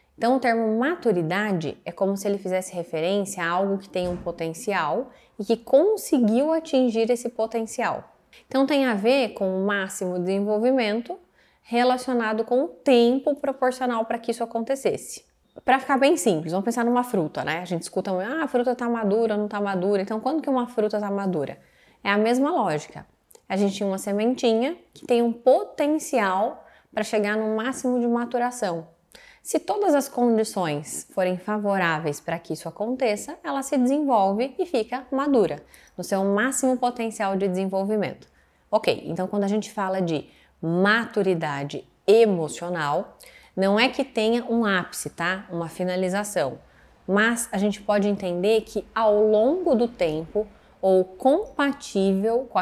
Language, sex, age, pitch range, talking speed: Portuguese, female, 20-39, 190-250 Hz, 160 wpm